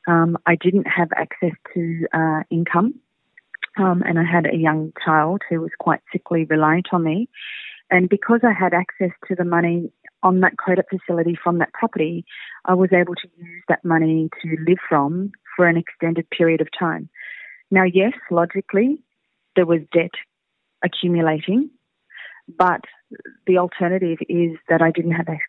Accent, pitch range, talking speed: Australian, 165-185 Hz, 160 wpm